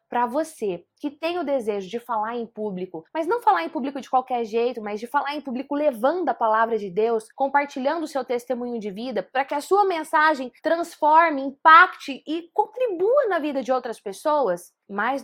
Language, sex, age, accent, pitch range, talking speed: Portuguese, female, 20-39, Brazilian, 195-275 Hz, 195 wpm